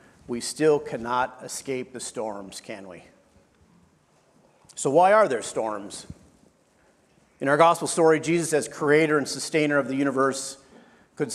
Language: English